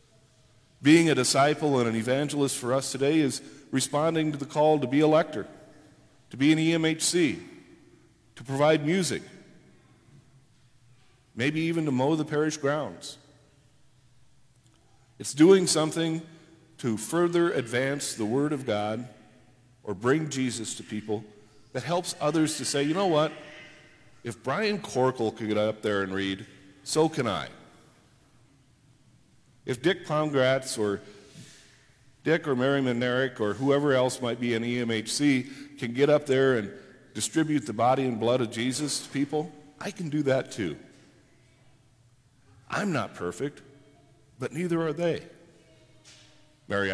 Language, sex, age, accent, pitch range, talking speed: English, male, 50-69, American, 120-150 Hz, 140 wpm